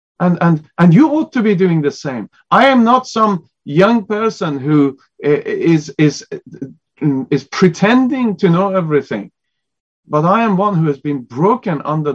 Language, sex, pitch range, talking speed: English, male, 140-200 Hz, 165 wpm